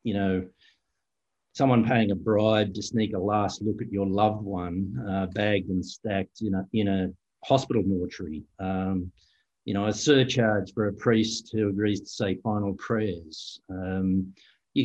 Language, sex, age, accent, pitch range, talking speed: English, male, 50-69, Australian, 95-115 Hz, 165 wpm